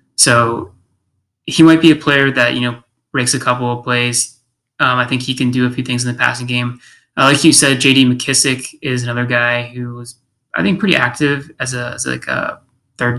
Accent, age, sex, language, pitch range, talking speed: American, 20-39, male, English, 125-135 Hz, 220 wpm